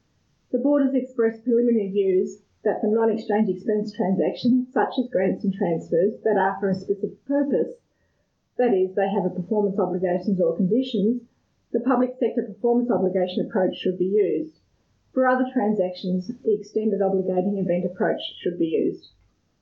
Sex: female